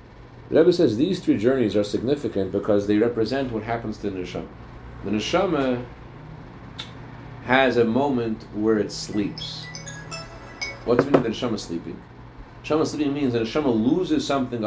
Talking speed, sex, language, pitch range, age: 145 wpm, male, English, 115-145 Hz, 40-59